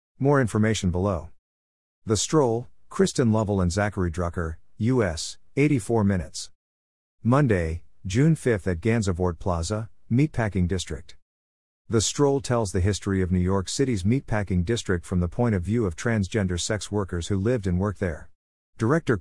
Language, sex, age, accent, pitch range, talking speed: English, male, 50-69, American, 90-115 Hz, 145 wpm